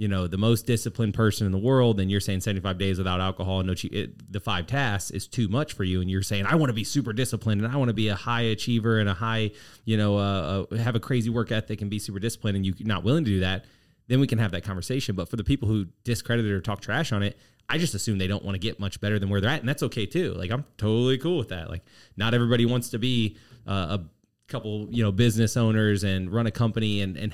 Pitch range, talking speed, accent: 100-120 Hz, 280 wpm, American